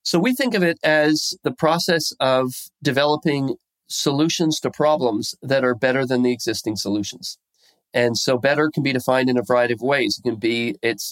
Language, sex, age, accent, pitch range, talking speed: English, male, 40-59, American, 125-160 Hz, 190 wpm